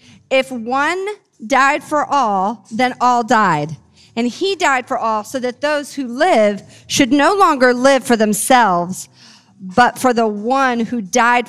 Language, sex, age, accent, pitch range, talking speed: English, female, 40-59, American, 210-285 Hz, 155 wpm